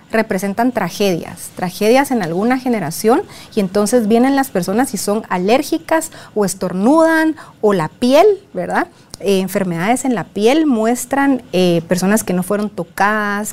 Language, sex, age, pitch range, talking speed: Spanish, female, 40-59, 190-250 Hz, 140 wpm